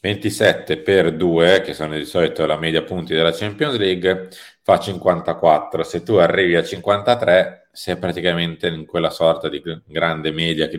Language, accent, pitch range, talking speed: Italian, native, 80-100 Hz, 160 wpm